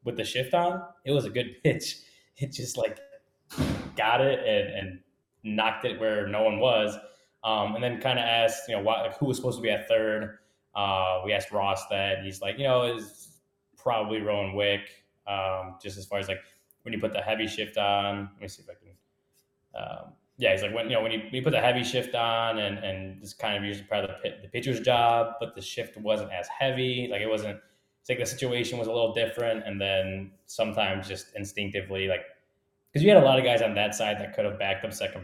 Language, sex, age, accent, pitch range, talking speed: English, male, 10-29, American, 100-125 Hz, 235 wpm